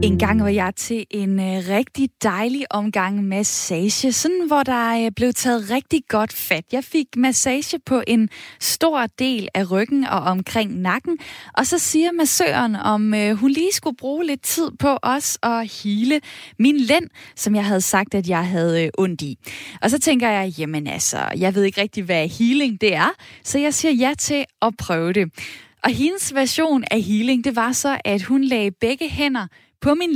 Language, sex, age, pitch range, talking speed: Danish, female, 20-39, 205-280 Hz, 195 wpm